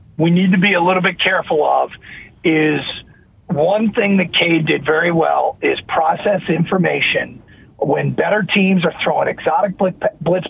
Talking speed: 155 wpm